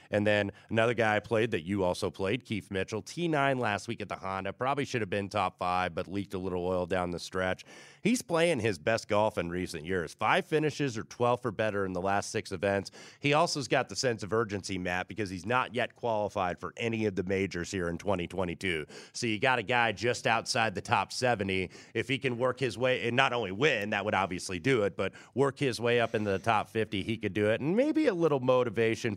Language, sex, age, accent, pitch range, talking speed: English, male, 30-49, American, 100-125 Hz, 240 wpm